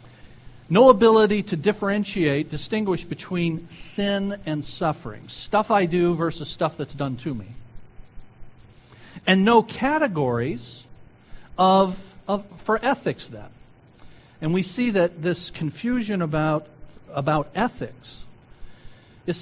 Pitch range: 130-210 Hz